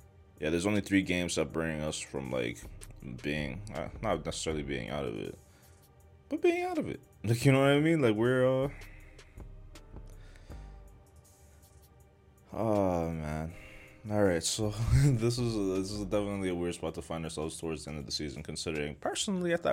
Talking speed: 175 wpm